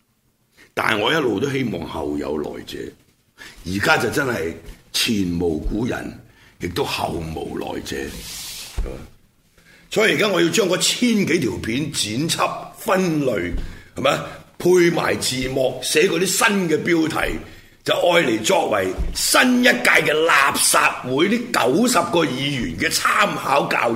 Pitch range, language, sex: 100-150 Hz, Chinese, male